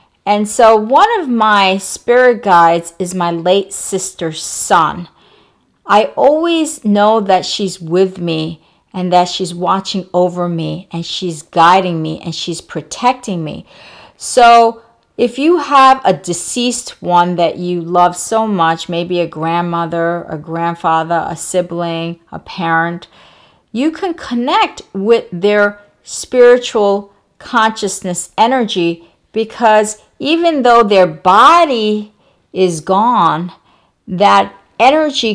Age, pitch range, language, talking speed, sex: 40-59, 175-230 Hz, English, 120 wpm, female